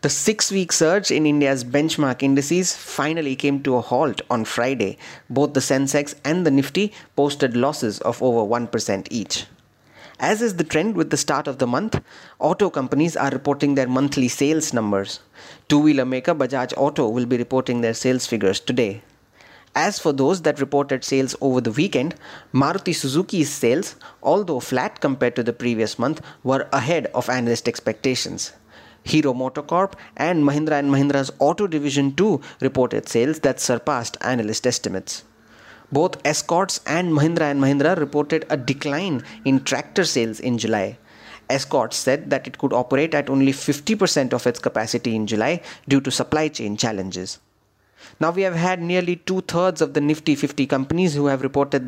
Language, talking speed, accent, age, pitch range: English, 165 wpm, Indian, 30-49, 125-155 Hz